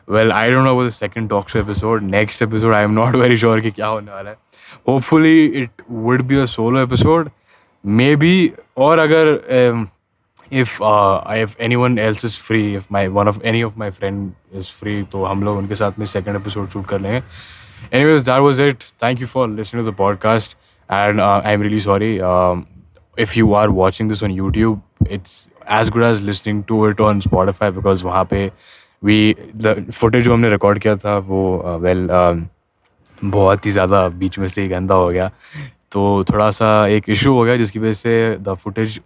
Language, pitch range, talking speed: English, 100-120 Hz, 175 wpm